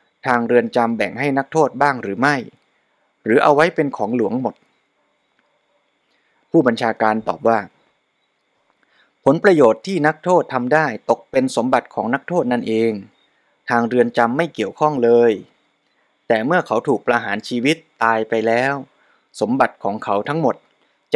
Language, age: Thai, 20-39